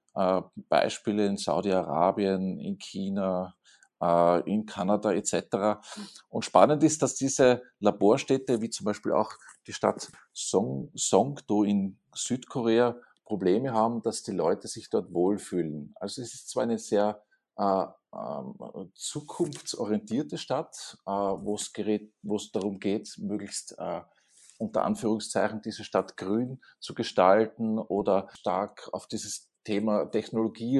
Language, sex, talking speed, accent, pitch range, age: German, male, 125 wpm, Austrian, 105-125 Hz, 50-69